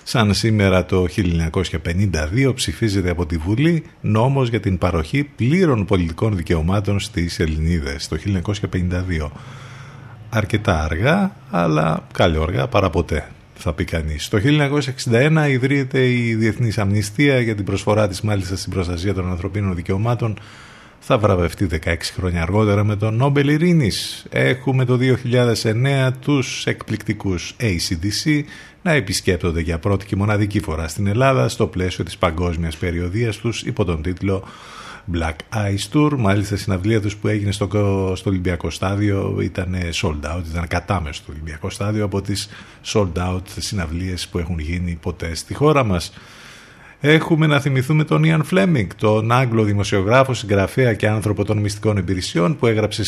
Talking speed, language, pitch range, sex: 145 wpm, Greek, 90-115 Hz, male